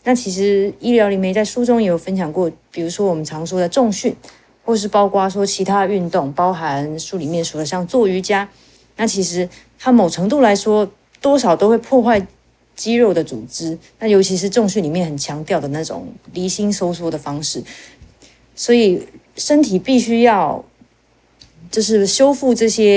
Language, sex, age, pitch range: Chinese, female, 30-49, 180-225 Hz